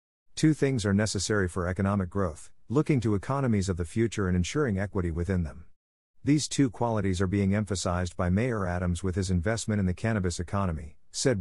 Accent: American